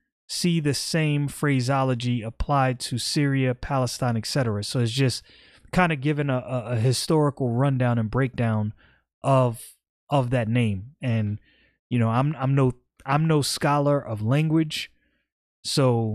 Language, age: English, 30-49